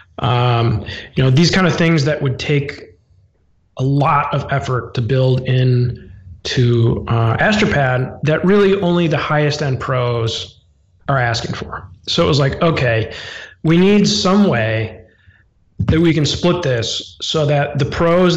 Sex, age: male, 20-39